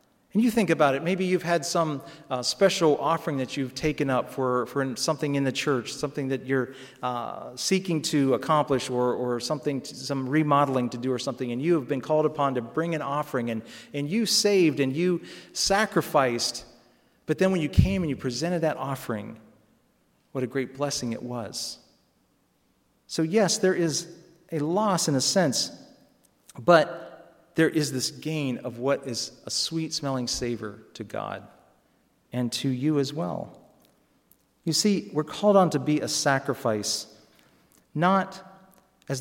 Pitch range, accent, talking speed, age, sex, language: 125-165 Hz, American, 170 wpm, 40-59, male, English